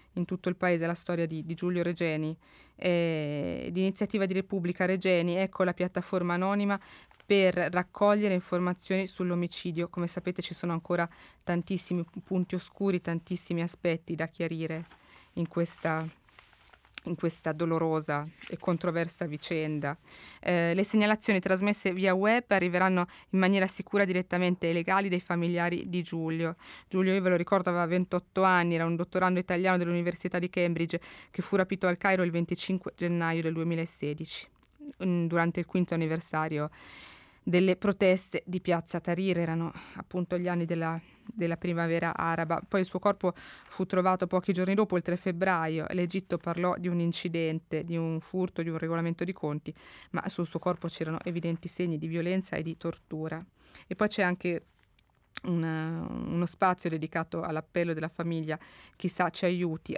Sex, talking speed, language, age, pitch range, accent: female, 150 wpm, Italian, 20-39, 165-185 Hz, native